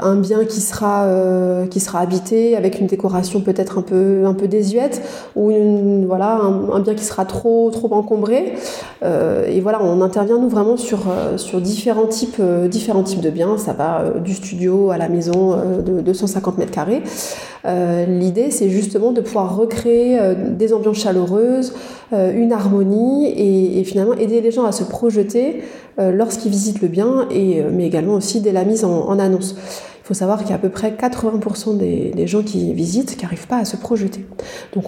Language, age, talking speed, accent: French, 30-49, 205 wpm, French